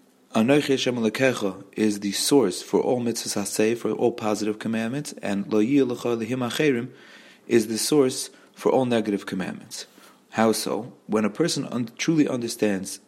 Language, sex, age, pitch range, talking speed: English, male, 30-49, 105-125 Hz, 145 wpm